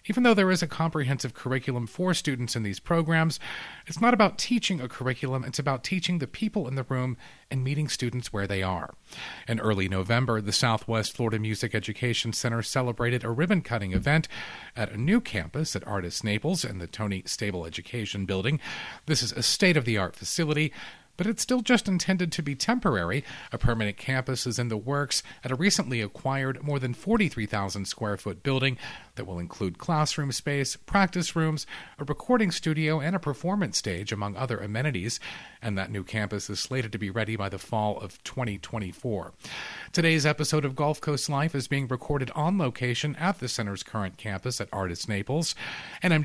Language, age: English, 40-59